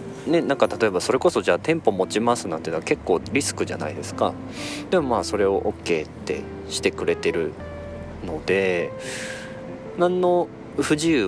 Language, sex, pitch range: Japanese, male, 95-145 Hz